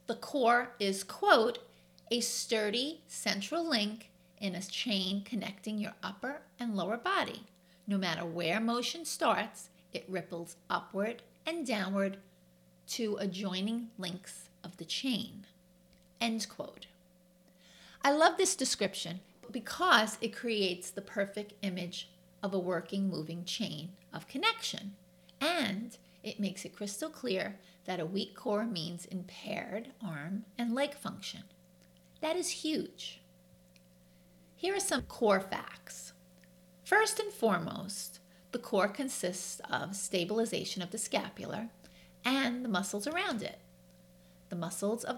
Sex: female